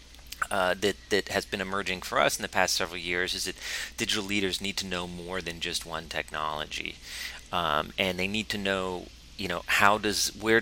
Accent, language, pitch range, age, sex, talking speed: American, English, 85-95 Hz, 30-49, male, 205 wpm